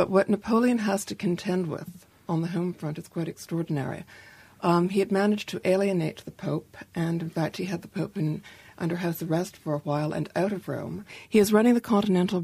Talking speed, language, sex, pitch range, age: 210 wpm, English, female, 170-200 Hz, 60-79